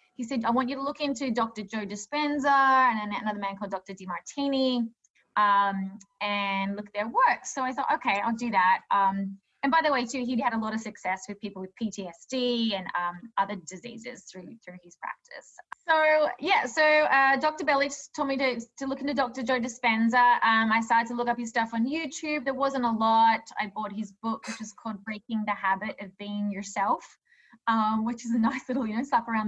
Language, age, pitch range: English, 20-39, 205-270 Hz